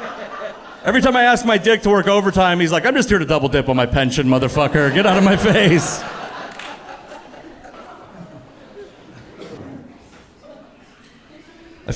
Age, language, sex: 40-59, English, male